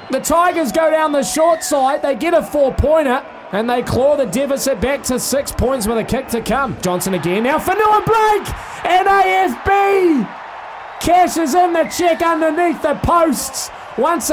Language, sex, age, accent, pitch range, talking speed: English, male, 20-39, Australian, 230-335 Hz, 170 wpm